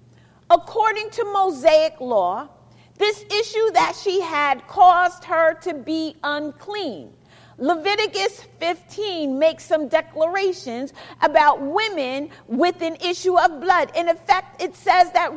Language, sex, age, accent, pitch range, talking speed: English, female, 40-59, American, 315-405 Hz, 120 wpm